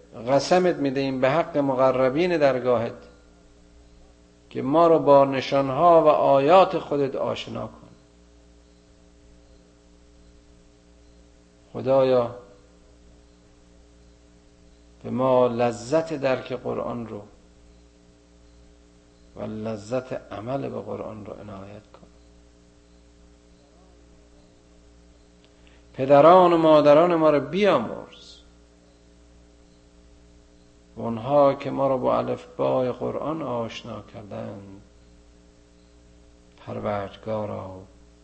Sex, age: male, 50-69